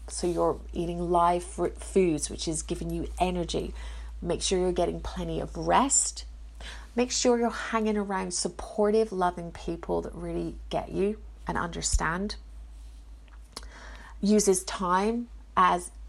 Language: English